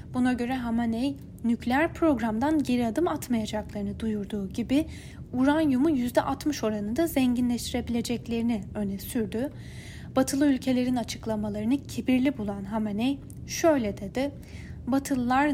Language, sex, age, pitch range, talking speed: Turkish, female, 10-29, 215-275 Hz, 95 wpm